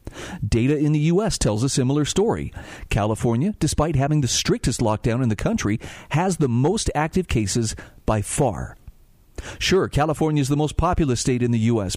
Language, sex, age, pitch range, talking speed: English, male, 40-59, 115-150 Hz, 170 wpm